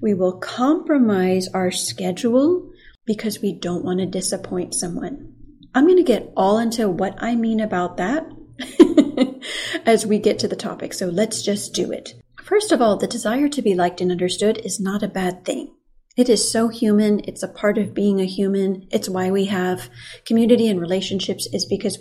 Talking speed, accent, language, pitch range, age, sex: 190 wpm, American, English, 185-240 Hz, 30-49, female